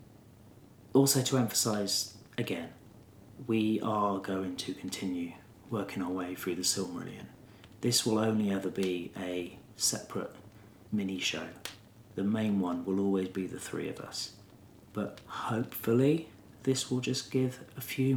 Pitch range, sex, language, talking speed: 100-125 Hz, male, English, 140 wpm